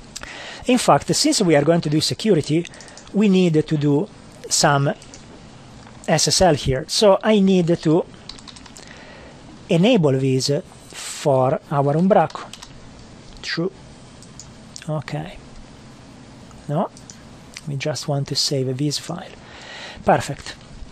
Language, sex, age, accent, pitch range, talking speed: English, male, 40-59, Italian, 145-200 Hz, 105 wpm